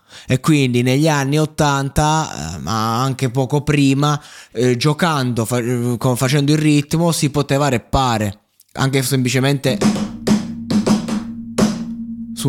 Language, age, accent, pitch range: Italian, 20-39, native, 115-145 Hz